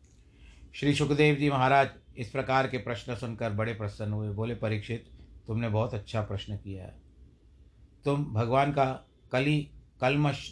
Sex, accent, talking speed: male, native, 145 wpm